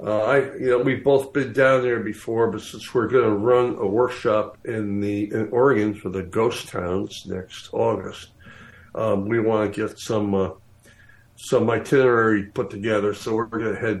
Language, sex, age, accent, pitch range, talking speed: English, male, 60-79, American, 100-115 Hz, 175 wpm